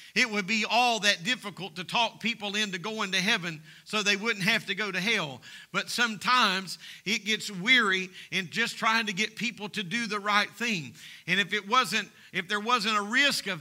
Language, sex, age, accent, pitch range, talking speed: English, male, 50-69, American, 200-245 Hz, 205 wpm